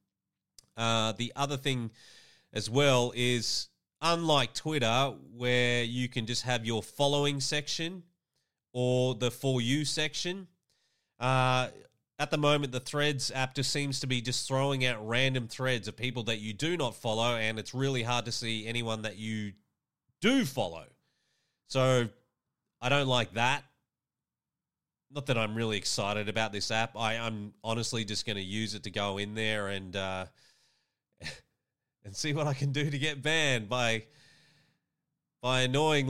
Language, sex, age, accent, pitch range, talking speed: English, male, 30-49, Australian, 115-145 Hz, 160 wpm